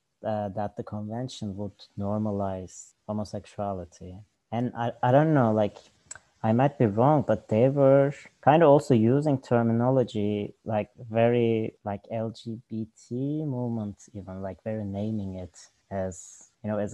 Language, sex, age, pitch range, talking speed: English, male, 20-39, 105-125 Hz, 140 wpm